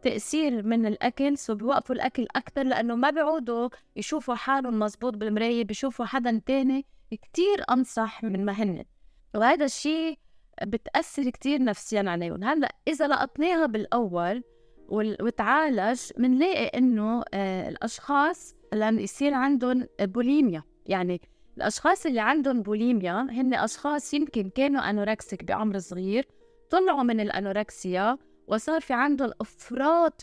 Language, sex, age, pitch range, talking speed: Arabic, female, 20-39, 210-275 Hz, 115 wpm